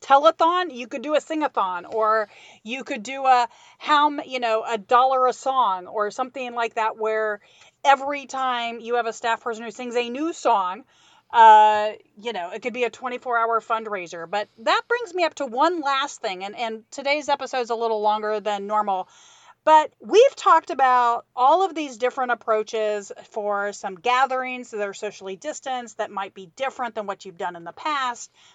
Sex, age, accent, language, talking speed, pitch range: female, 40-59, American, English, 190 wpm, 210-260 Hz